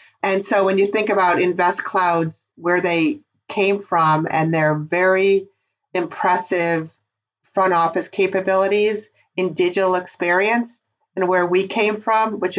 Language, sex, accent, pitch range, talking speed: English, female, American, 170-195 Hz, 130 wpm